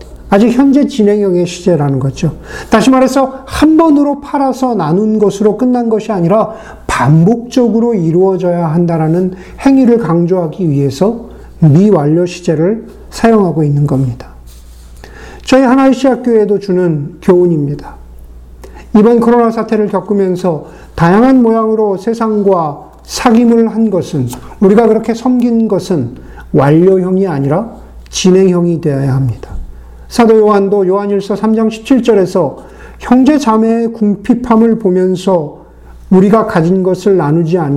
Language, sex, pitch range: Korean, male, 155-225 Hz